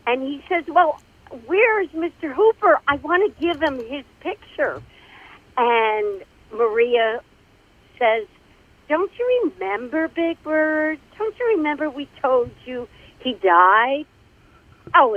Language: English